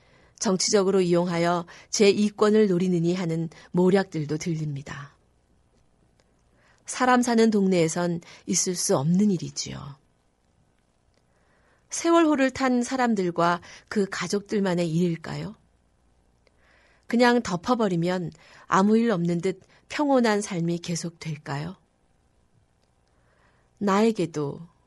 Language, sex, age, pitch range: Korean, female, 40-59, 145-205 Hz